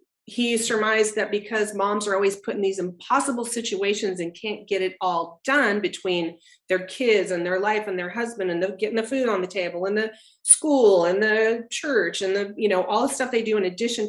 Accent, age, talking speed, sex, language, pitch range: American, 30-49, 215 wpm, female, English, 180-220 Hz